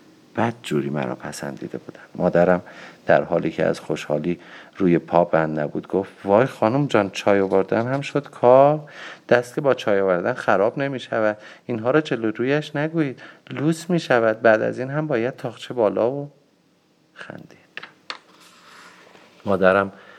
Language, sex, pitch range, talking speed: Persian, male, 90-130 Hz, 150 wpm